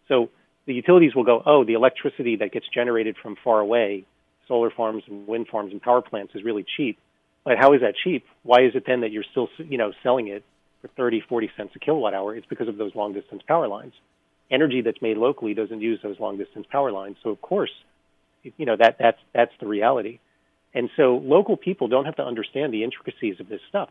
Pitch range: 100-130 Hz